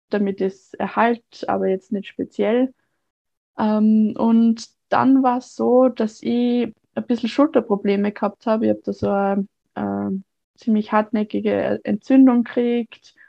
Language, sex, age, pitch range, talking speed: German, female, 20-39, 205-245 Hz, 135 wpm